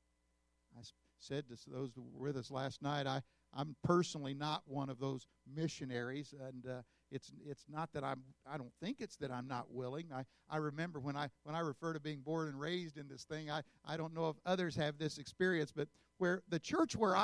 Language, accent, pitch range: English, American, 120-155 Hz